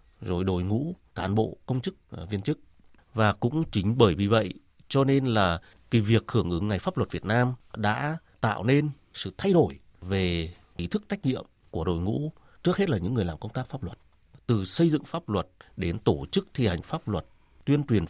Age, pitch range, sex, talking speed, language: 30-49, 90-130 Hz, male, 215 wpm, Vietnamese